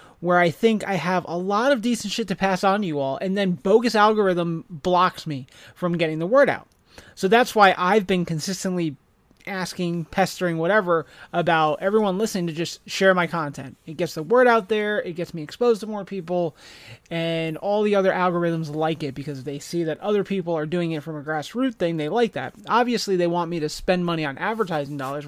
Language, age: English, 30-49